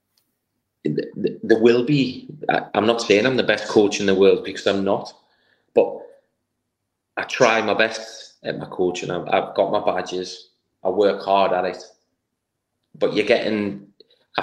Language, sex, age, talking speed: English, male, 20-39, 175 wpm